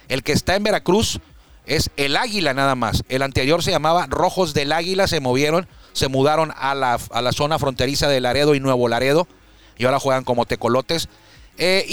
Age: 40-59